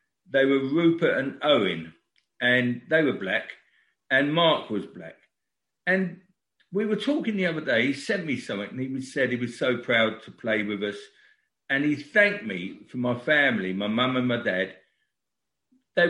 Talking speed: 180 wpm